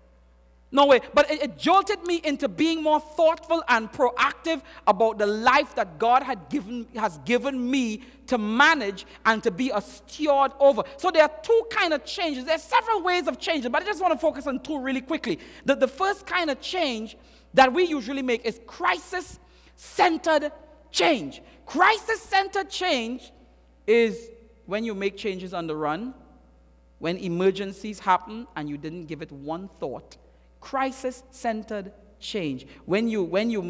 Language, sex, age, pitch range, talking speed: English, male, 40-59, 190-305 Hz, 165 wpm